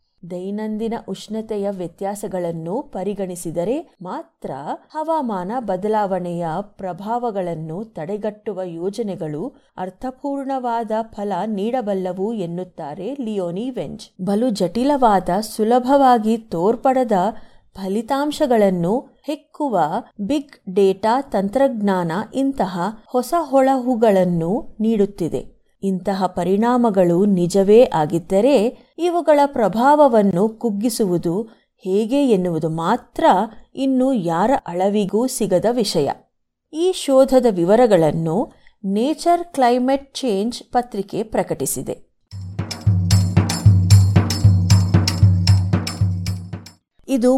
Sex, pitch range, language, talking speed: female, 180-250 Hz, Kannada, 65 wpm